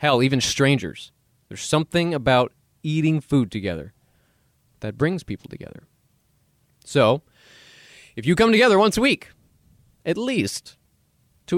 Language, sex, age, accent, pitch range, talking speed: English, male, 20-39, American, 110-150 Hz, 125 wpm